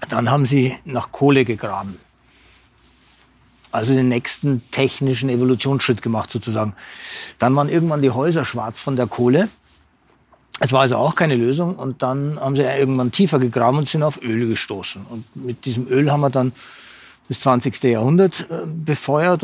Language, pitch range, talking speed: German, 125-150 Hz, 155 wpm